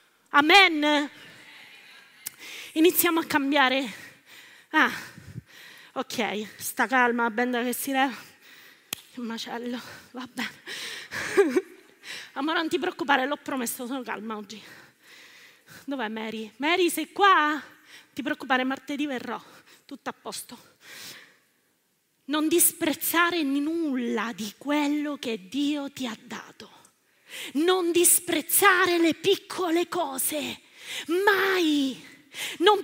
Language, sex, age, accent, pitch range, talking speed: Italian, female, 20-39, native, 280-410 Hz, 100 wpm